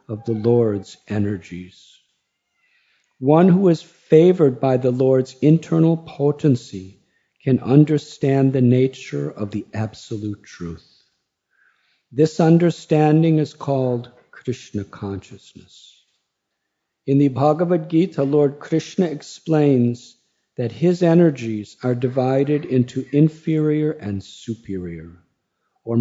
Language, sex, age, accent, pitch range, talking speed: English, male, 50-69, American, 115-150 Hz, 100 wpm